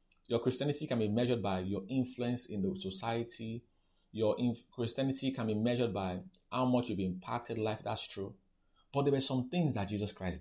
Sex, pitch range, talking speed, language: male, 95-135 Hz, 185 wpm, English